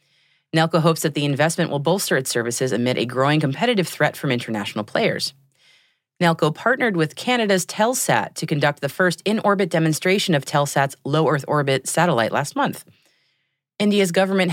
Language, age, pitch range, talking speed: English, 30-49, 135-195 Hz, 155 wpm